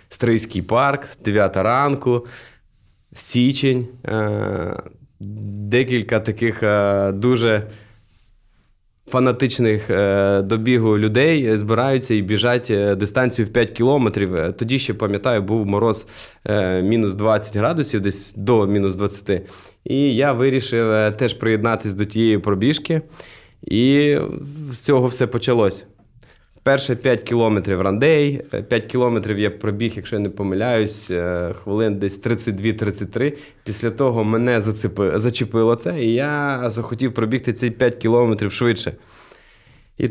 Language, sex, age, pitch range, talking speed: Ukrainian, male, 20-39, 105-125 Hz, 110 wpm